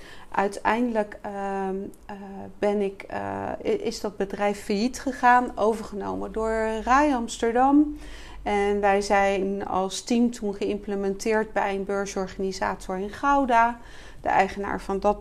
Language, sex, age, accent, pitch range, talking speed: Dutch, female, 40-59, Dutch, 190-215 Hz, 120 wpm